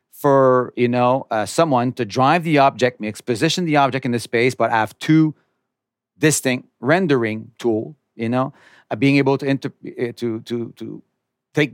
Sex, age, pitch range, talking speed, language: male, 40-59, 110-135 Hz, 170 wpm, English